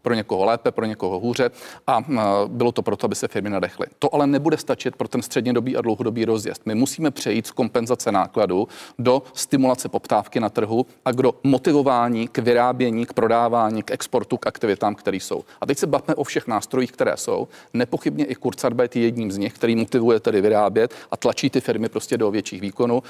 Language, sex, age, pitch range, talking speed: Czech, male, 40-59, 110-130 Hz, 195 wpm